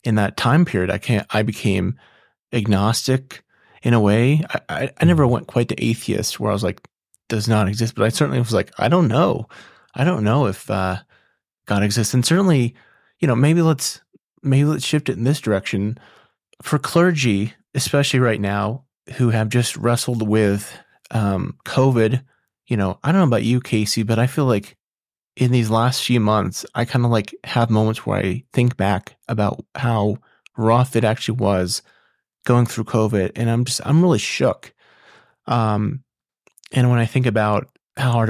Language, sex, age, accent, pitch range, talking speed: English, male, 30-49, American, 105-130 Hz, 180 wpm